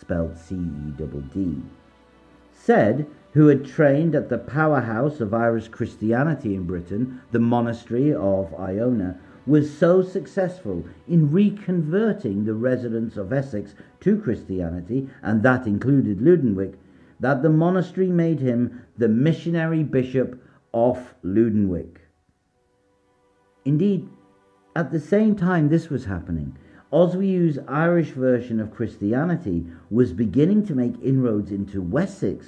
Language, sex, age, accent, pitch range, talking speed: English, male, 50-69, British, 100-150 Hz, 120 wpm